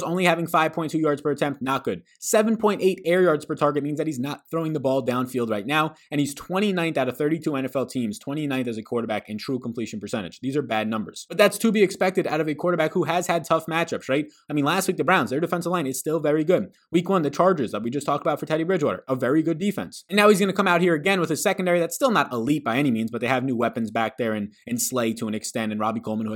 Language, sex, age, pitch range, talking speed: English, male, 20-39, 120-180 Hz, 280 wpm